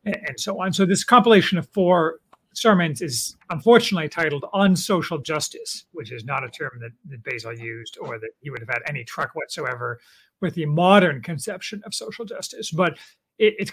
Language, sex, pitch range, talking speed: English, male, 140-190 Hz, 185 wpm